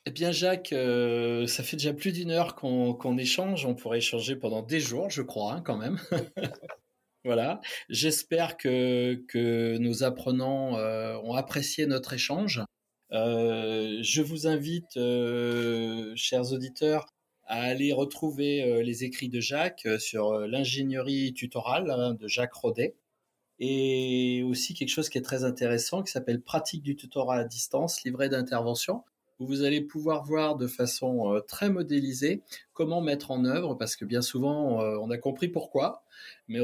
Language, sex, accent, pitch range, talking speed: French, male, French, 120-150 Hz, 160 wpm